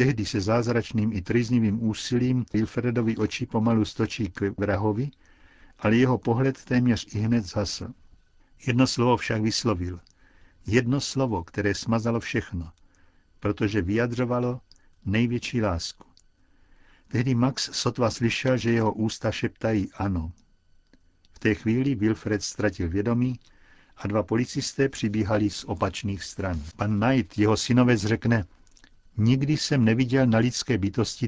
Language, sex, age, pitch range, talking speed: Czech, male, 60-79, 100-120 Hz, 125 wpm